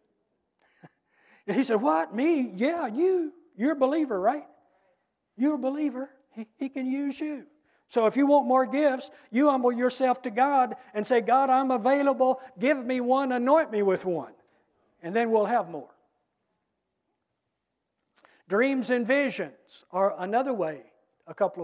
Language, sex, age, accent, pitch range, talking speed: English, male, 60-79, American, 190-260 Hz, 155 wpm